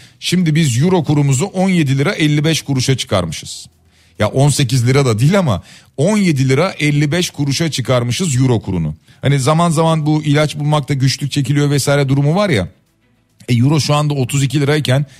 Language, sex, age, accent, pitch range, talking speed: Turkish, male, 40-59, native, 115-155 Hz, 160 wpm